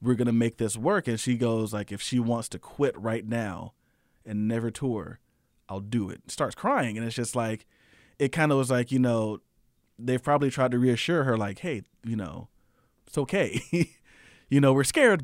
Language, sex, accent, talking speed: English, male, American, 205 wpm